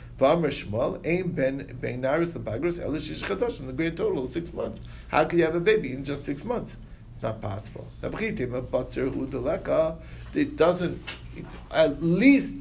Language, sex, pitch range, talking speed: English, male, 115-160 Hz, 125 wpm